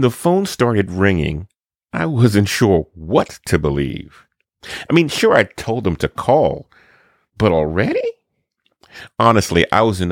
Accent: American